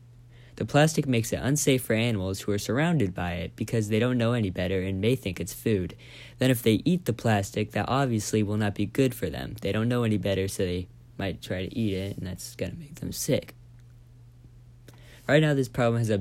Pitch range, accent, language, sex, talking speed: 100-120 Hz, American, English, male, 225 wpm